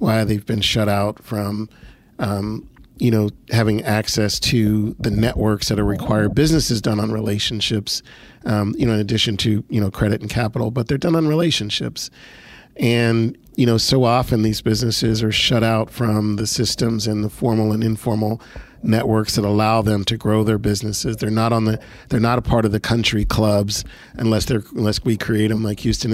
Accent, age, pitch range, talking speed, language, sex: American, 40-59, 105-120 Hz, 190 wpm, English, male